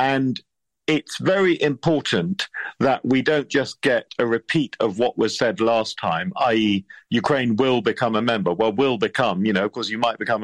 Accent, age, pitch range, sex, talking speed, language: British, 50-69, 115-155 Hz, male, 190 wpm, English